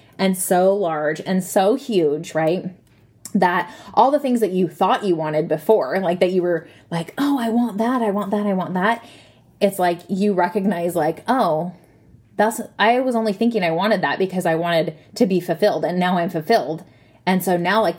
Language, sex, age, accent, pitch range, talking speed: English, female, 20-39, American, 170-210 Hz, 200 wpm